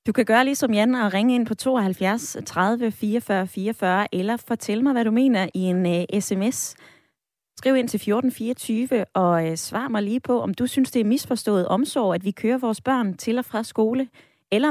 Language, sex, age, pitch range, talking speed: Danish, female, 20-39, 185-245 Hz, 205 wpm